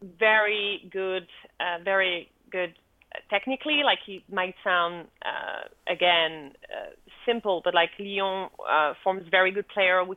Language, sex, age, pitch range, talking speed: English, female, 30-49, 175-215 Hz, 135 wpm